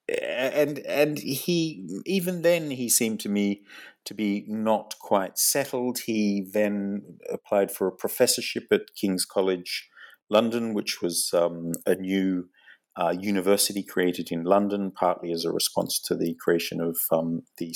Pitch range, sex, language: 95-130 Hz, male, English